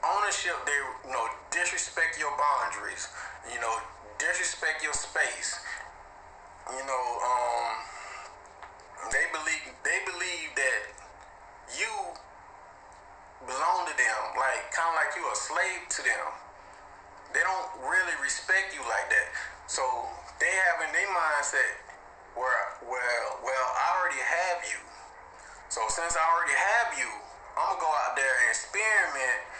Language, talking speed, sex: English, 130 wpm, male